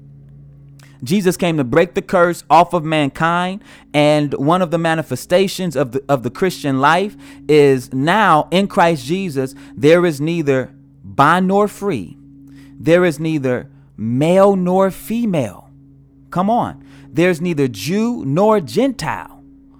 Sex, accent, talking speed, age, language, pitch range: male, American, 135 wpm, 30-49, English, 140-185 Hz